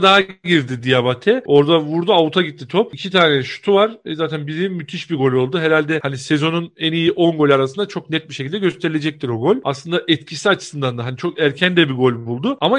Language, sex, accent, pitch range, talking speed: Turkish, male, native, 155-225 Hz, 215 wpm